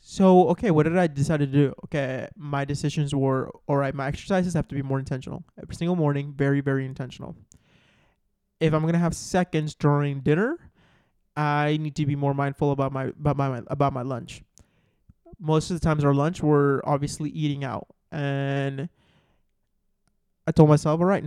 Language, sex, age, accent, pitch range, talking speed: English, male, 20-39, American, 140-165 Hz, 170 wpm